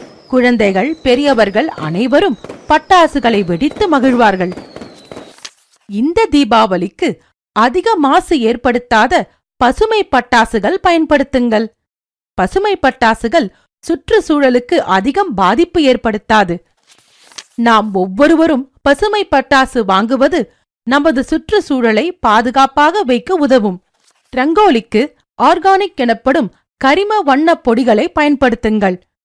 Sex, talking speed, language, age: female, 65 wpm, Tamil, 40-59